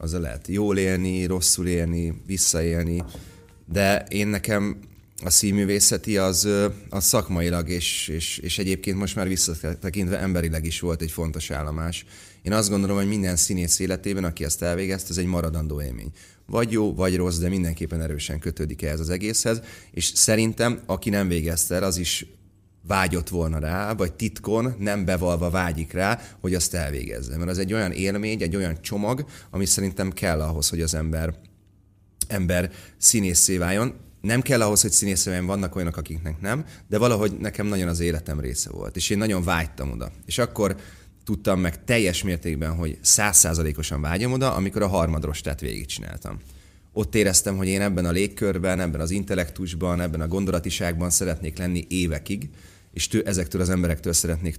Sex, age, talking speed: male, 30-49, 165 wpm